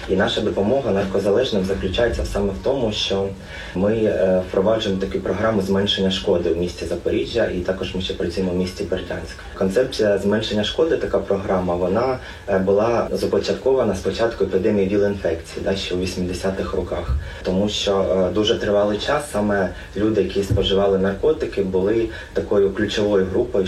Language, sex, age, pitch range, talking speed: Ukrainian, male, 20-39, 95-105 Hz, 145 wpm